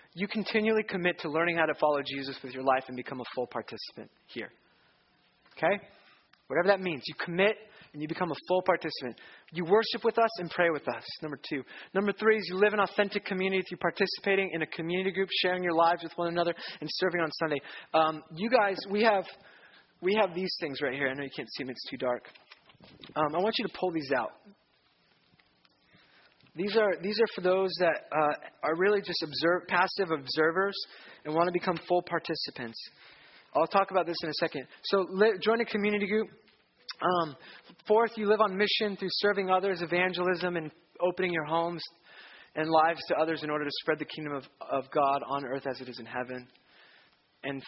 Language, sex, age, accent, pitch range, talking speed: English, male, 20-39, American, 150-195 Hz, 200 wpm